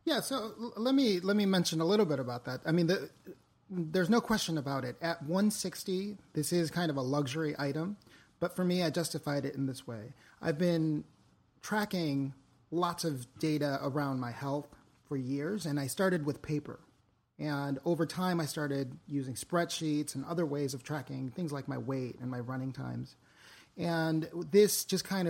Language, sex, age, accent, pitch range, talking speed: English, male, 30-49, American, 140-180 Hz, 185 wpm